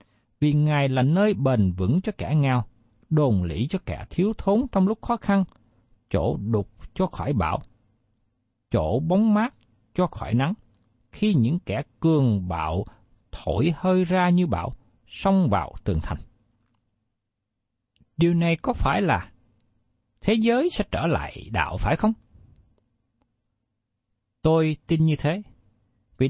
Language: Vietnamese